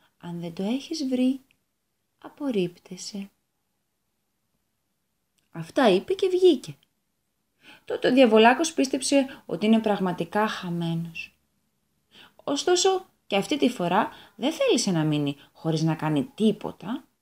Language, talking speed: Greek, 110 wpm